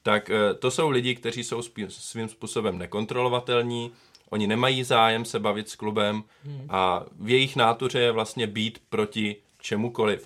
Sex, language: male, Czech